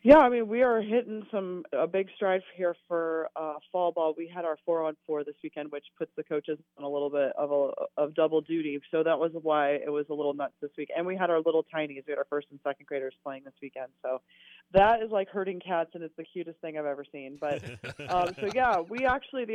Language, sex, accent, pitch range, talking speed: English, female, American, 145-180 Hz, 260 wpm